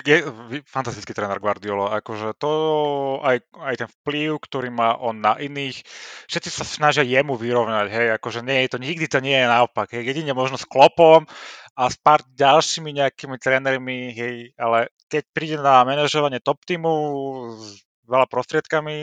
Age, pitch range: 30-49, 115-140 Hz